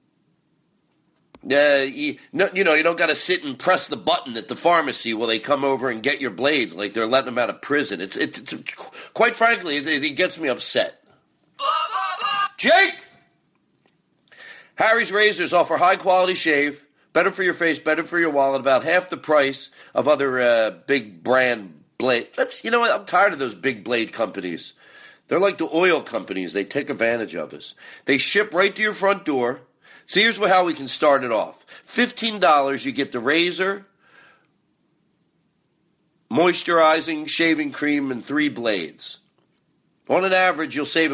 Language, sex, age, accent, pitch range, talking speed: English, male, 40-59, American, 135-195 Hz, 170 wpm